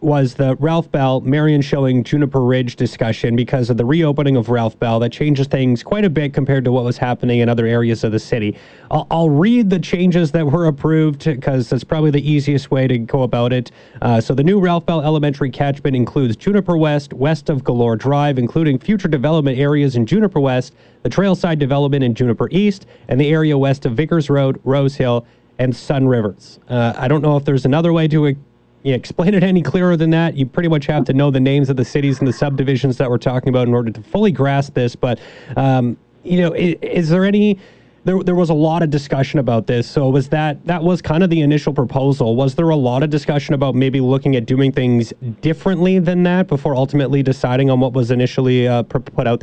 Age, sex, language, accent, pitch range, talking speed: 30-49, male, English, American, 125-160 Hz, 225 wpm